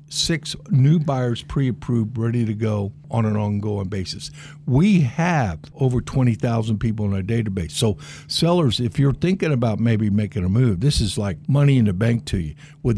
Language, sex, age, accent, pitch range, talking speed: English, male, 60-79, American, 110-145 Hz, 180 wpm